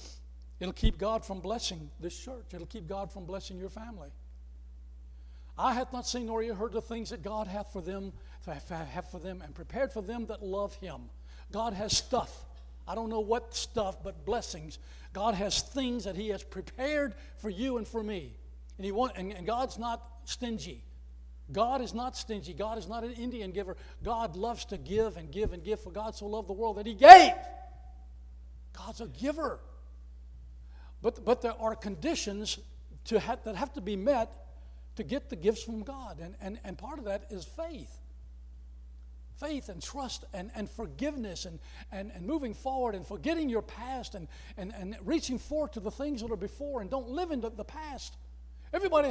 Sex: male